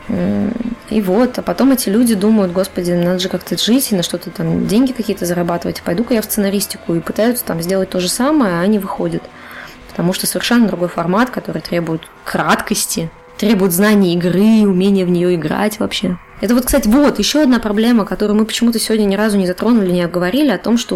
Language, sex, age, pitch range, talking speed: Russian, female, 20-39, 180-225 Hz, 200 wpm